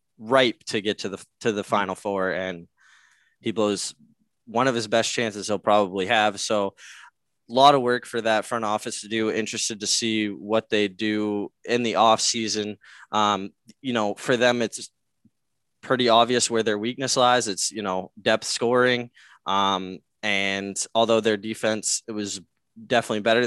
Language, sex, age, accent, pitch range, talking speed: English, male, 20-39, American, 105-125 Hz, 170 wpm